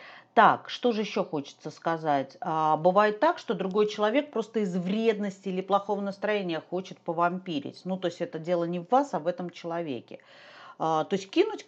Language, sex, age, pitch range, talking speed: Russian, female, 40-59, 170-225 Hz, 175 wpm